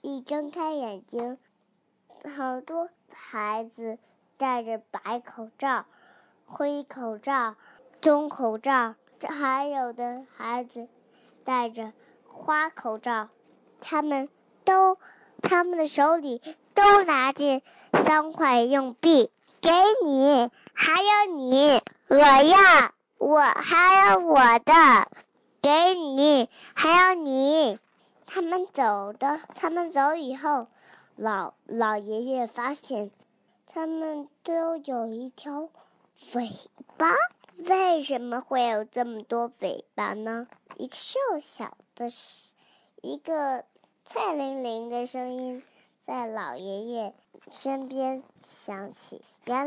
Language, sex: Chinese, male